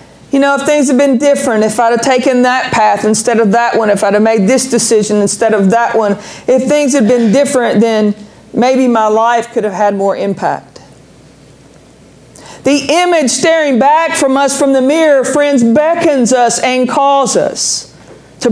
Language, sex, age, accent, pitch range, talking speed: English, female, 40-59, American, 220-275 Hz, 185 wpm